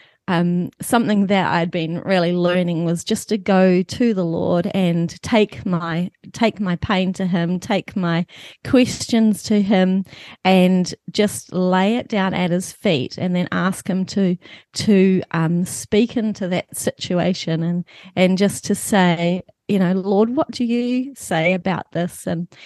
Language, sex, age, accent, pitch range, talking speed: English, female, 30-49, Australian, 175-210 Hz, 160 wpm